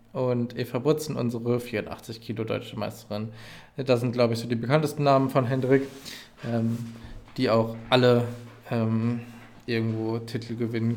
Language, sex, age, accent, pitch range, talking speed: German, male, 20-39, German, 115-135 Hz, 125 wpm